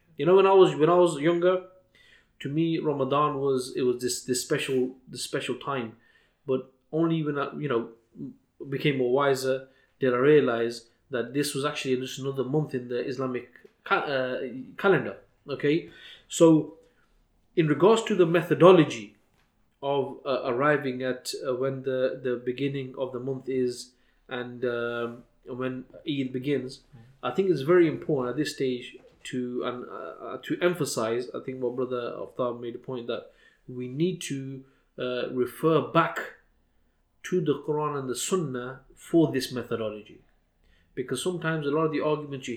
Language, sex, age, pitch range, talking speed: English, male, 20-39, 125-155 Hz, 165 wpm